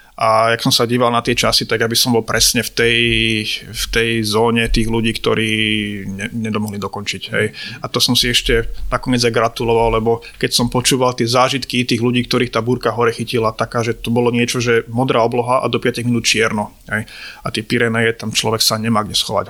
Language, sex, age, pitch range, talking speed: Slovak, male, 30-49, 115-125 Hz, 210 wpm